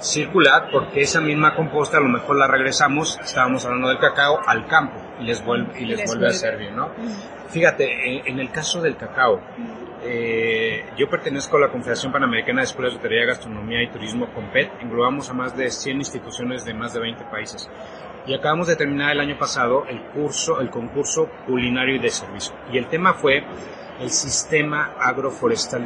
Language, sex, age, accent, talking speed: Spanish, male, 30-49, Mexican, 190 wpm